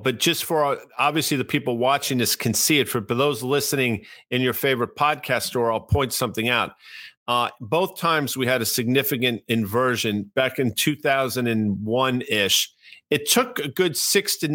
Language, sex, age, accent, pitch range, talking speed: English, male, 50-69, American, 120-150 Hz, 170 wpm